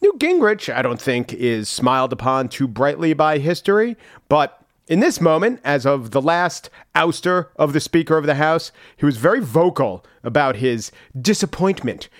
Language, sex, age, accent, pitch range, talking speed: English, male, 40-59, American, 135-180 Hz, 165 wpm